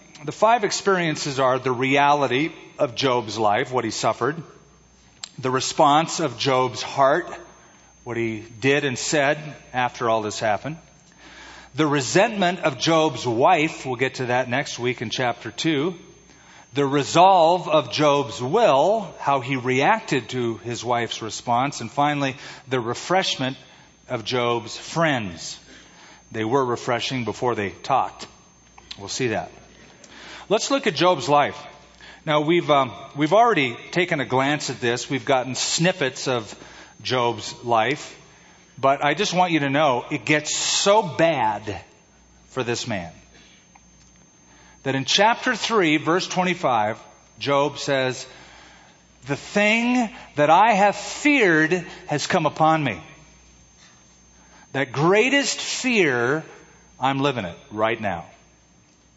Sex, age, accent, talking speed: male, 40-59, American, 130 wpm